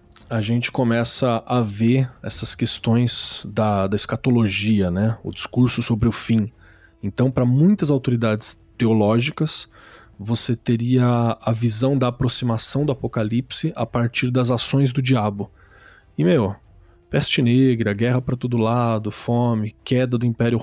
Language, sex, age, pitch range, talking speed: Portuguese, male, 20-39, 110-130 Hz, 135 wpm